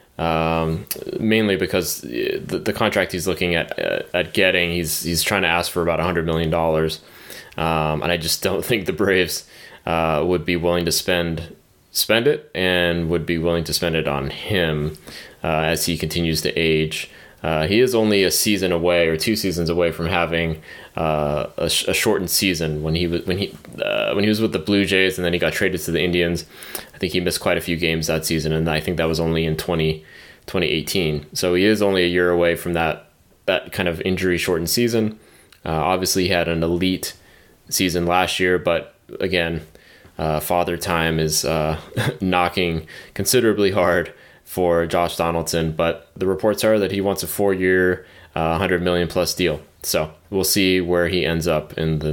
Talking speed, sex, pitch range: 195 wpm, male, 80-95 Hz